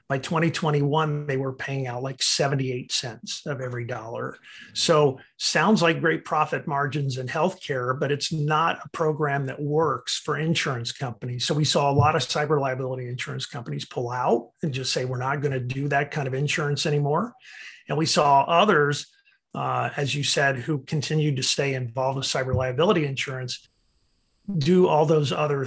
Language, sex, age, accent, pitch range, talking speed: English, male, 50-69, American, 130-155 Hz, 180 wpm